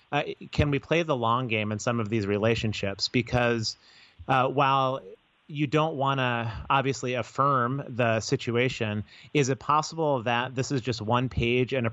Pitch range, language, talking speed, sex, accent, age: 115-135 Hz, English, 170 wpm, male, American, 30-49